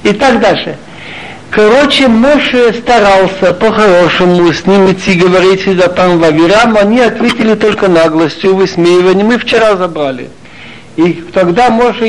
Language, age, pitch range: Russian, 60-79, 175-235 Hz